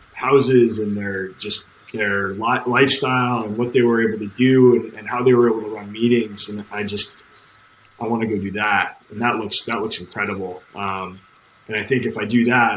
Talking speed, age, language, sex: 210 wpm, 20-39, English, male